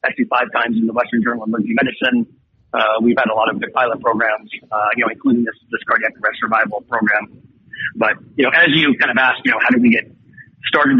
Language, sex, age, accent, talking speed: English, male, 50-69, American, 235 wpm